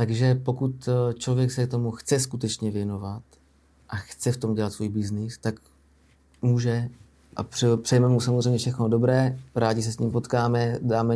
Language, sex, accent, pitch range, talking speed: Czech, male, native, 110-130 Hz, 160 wpm